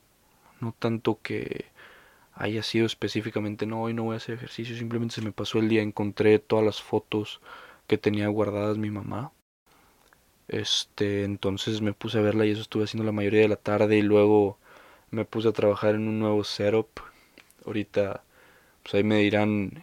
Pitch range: 100-110 Hz